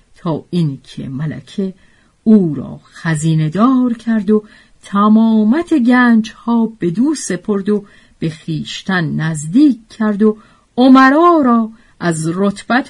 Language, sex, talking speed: Persian, female, 115 wpm